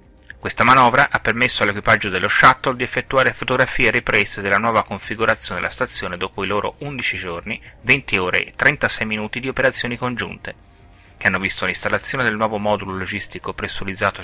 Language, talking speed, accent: Italian, 160 wpm, native